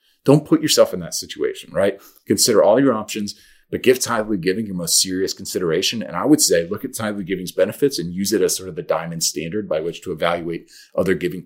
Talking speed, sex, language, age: 225 wpm, male, English, 40-59